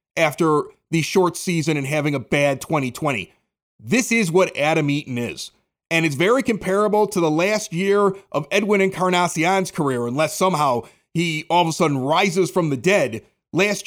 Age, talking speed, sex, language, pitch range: 40-59, 170 wpm, male, English, 155-200 Hz